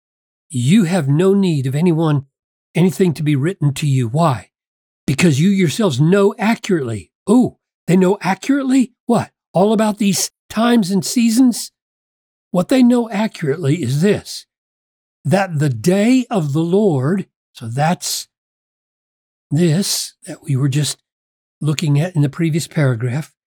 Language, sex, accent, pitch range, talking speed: English, male, American, 140-205 Hz, 140 wpm